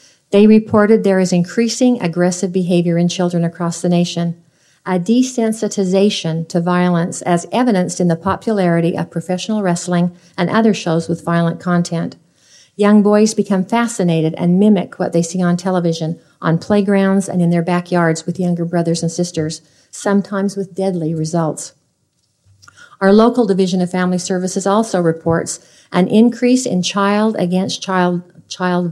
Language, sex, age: English, female, 50-69